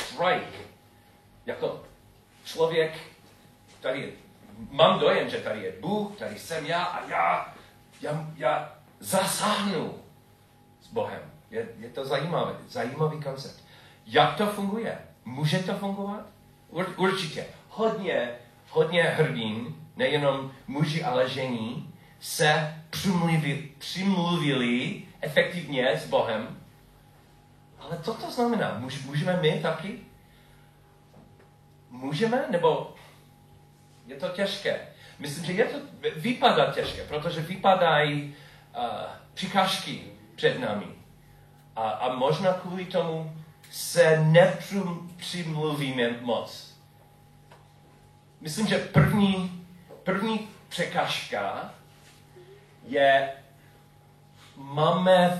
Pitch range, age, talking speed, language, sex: 140-185 Hz, 40-59, 95 wpm, Czech, male